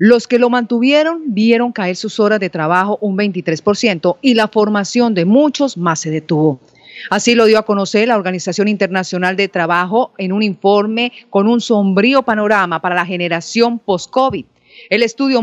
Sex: female